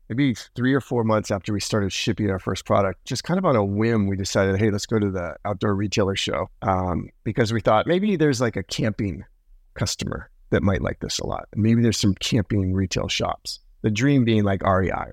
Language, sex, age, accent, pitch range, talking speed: English, male, 30-49, American, 100-120 Hz, 220 wpm